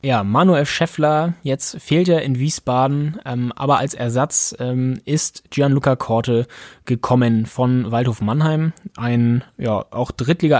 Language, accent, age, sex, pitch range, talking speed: German, German, 20-39, male, 120-150 Hz, 135 wpm